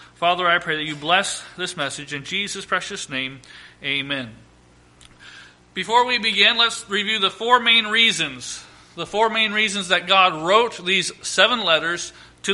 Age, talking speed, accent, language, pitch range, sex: 40-59, 160 wpm, American, English, 170-210 Hz, male